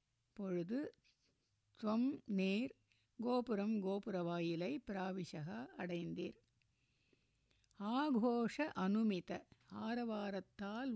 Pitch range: 185-235 Hz